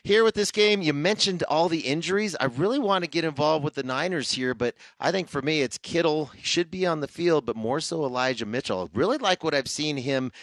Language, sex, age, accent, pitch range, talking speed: English, male, 30-49, American, 105-145 Hz, 255 wpm